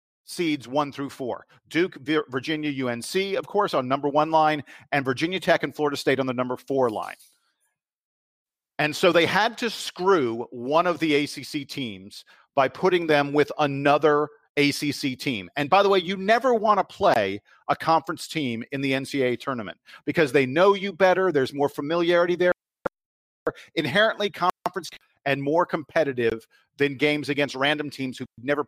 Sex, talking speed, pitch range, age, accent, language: male, 165 wpm, 140-195 Hz, 50-69, American, English